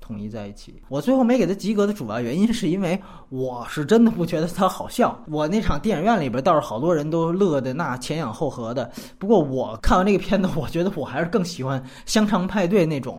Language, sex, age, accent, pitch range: Chinese, male, 20-39, native, 145-230 Hz